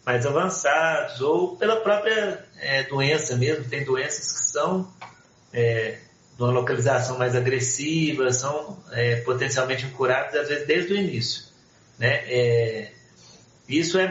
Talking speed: 115 wpm